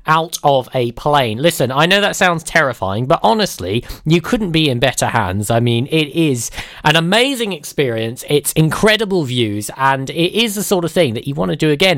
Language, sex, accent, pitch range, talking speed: English, male, British, 135-180 Hz, 205 wpm